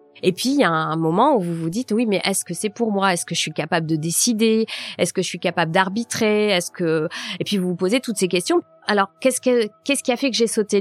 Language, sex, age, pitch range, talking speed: French, female, 30-49, 180-225 Hz, 285 wpm